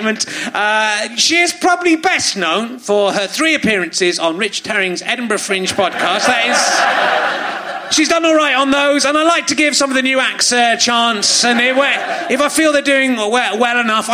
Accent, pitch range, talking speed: British, 195-285 Hz, 185 wpm